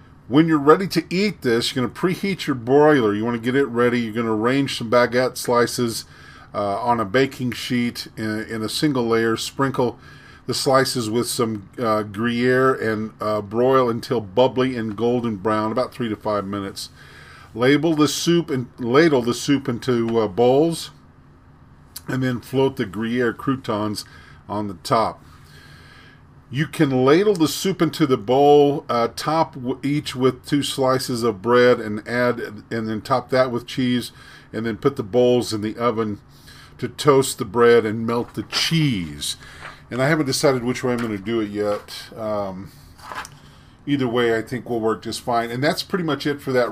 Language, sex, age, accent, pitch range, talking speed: English, male, 50-69, American, 110-135 Hz, 180 wpm